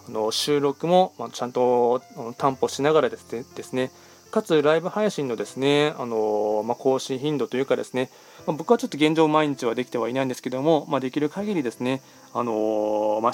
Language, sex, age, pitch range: Japanese, male, 20-39, 125-145 Hz